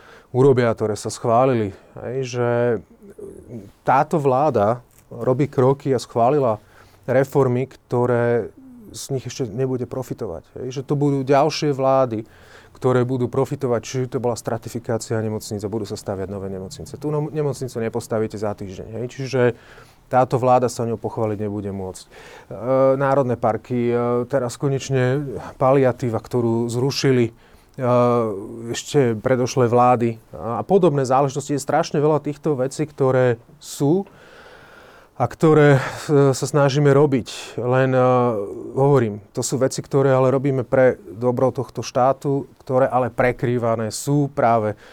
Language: Slovak